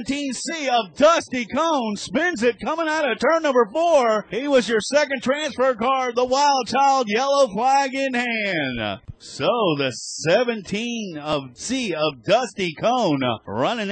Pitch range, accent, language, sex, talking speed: 170-225 Hz, American, English, male, 150 wpm